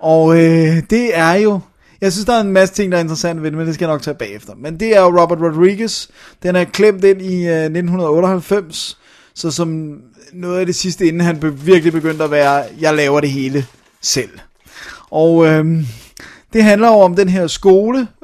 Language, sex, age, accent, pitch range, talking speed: Danish, male, 30-49, native, 145-180 Hz, 205 wpm